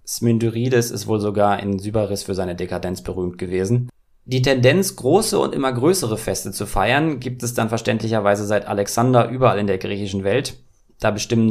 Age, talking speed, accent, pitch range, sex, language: 20-39, 170 wpm, German, 105-125 Hz, male, German